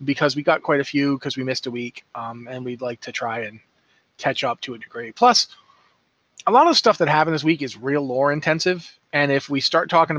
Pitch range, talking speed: 125-165 Hz, 240 wpm